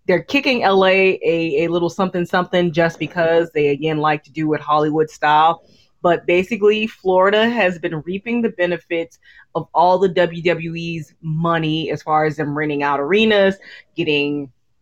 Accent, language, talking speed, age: American, English, 155 wpm, 20-39